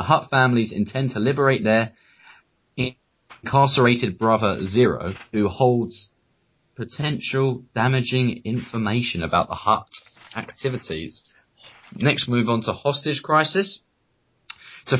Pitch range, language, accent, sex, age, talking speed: 105-140 Hz, English, British, male, 20-39, 105 wpm